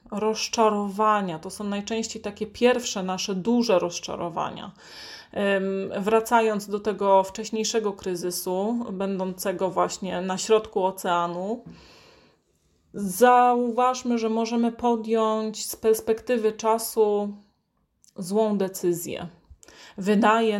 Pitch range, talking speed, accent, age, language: 200-235 Hz, 85 wpm, native, 30-49, Polish